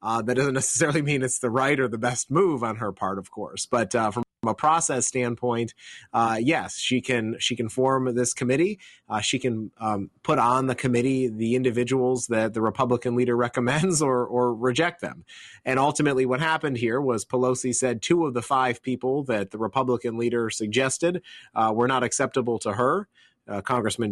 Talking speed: 190 wpm